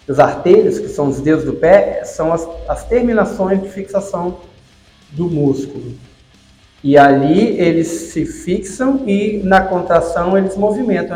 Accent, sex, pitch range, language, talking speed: Brazilian, male, 135-200 Hz, Portuguese, 140 wpm